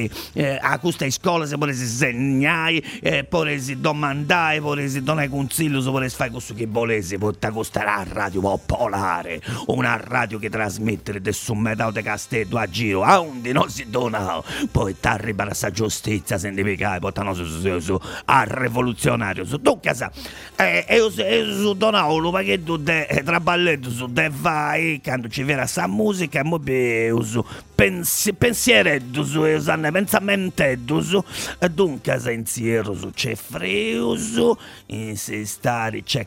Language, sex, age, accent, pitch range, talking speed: Italian, male, 50-69, native, 110-160 Hz, 165 wpm